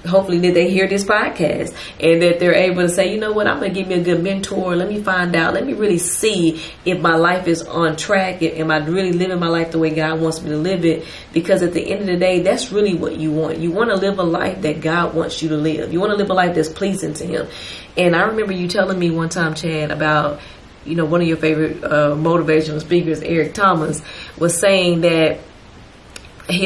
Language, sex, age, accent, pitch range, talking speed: English, female, 30-49, American, 160-195 Hz, 250 wpm